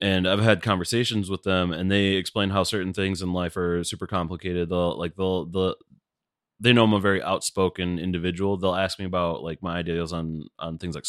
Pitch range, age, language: 85-105 Hz, 20-39, English